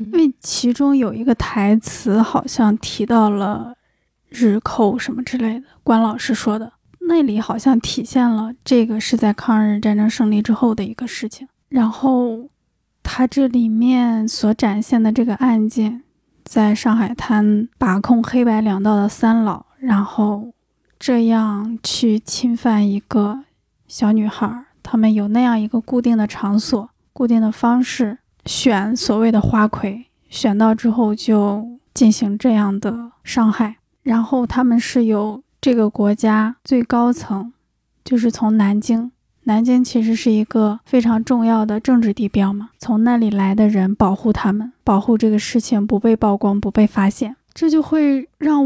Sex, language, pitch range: female, Chinese, 215-245 Hz